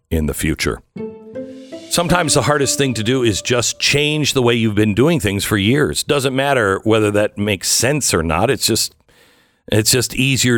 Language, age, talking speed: English, 50-69, 185 wpm